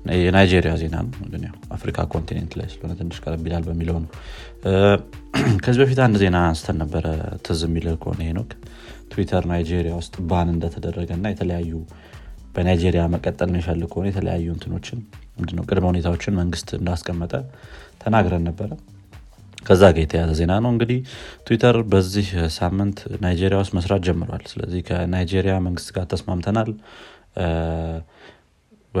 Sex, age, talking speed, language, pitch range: male, 30-49, 50 wpm, Amharic, 85-100 Hz